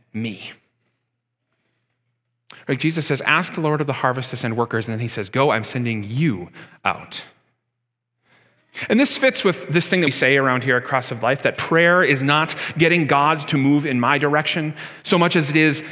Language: English